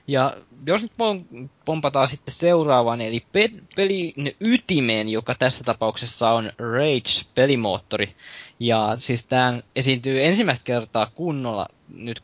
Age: 20-39